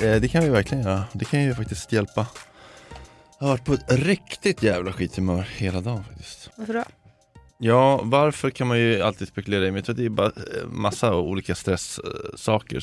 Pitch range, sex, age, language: 90-115 Hz, male, 20-39, Swedish